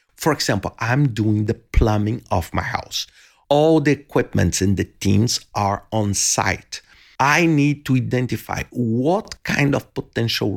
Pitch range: 100-130 Hz